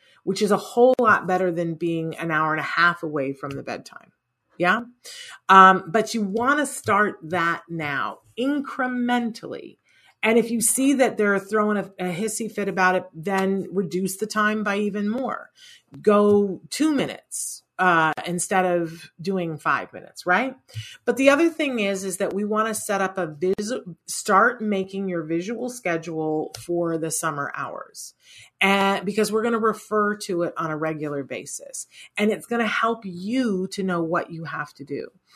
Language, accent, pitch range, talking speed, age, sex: English, American, 160-215 Hz, 180 wpm, 40-59, female